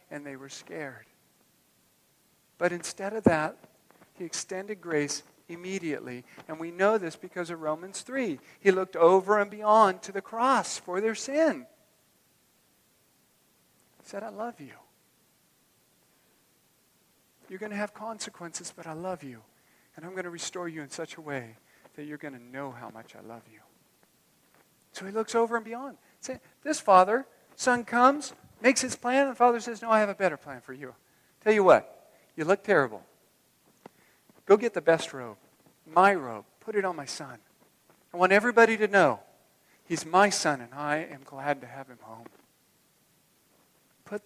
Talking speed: 170 wpm